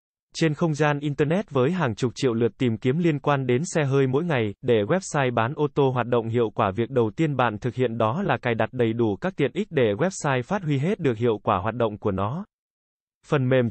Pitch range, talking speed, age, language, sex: 120-155 Hz, 245 wpm, 20-39, Vietnamese, male